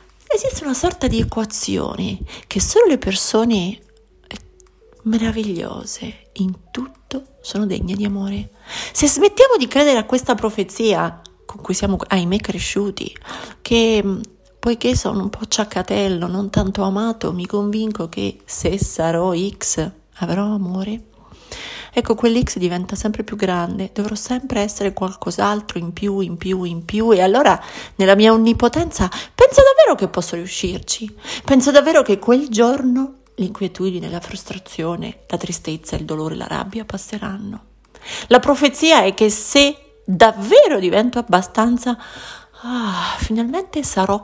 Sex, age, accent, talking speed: female, 30-49, native, 130 wpm